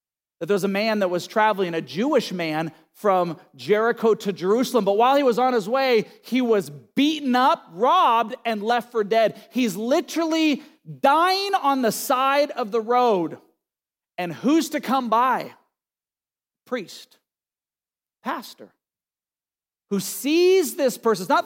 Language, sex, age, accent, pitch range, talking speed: English, male, 40-59, American, 200-270 Hz, 145 wpm